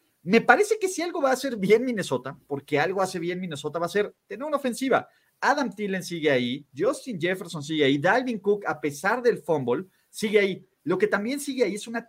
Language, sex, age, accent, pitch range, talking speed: Spanish, male, 40-59, Mexican, 155-220 Hz, 220 wpm